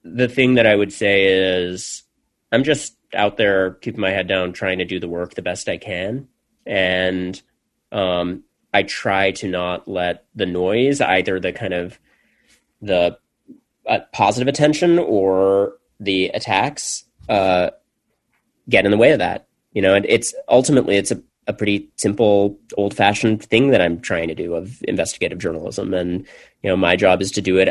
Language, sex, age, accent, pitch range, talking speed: English, male, 30-49, American, 90-110 Hz, 175 wpm